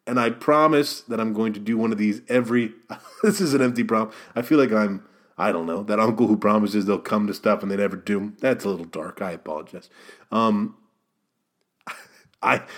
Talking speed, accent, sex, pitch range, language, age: 205 wpm, American, male, 100-135 Hz, English, 30-49